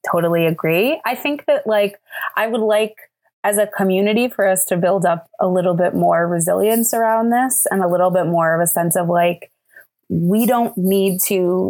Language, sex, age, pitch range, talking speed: English, female, 20-39, 175-215 Hz, 195 wpm